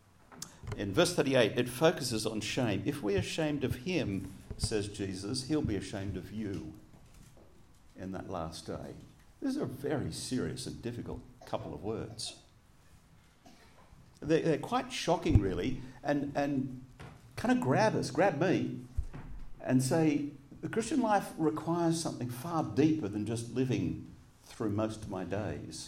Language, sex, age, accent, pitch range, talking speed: English, male, 50-69, Australian, 105-145 Hz, 140 wpm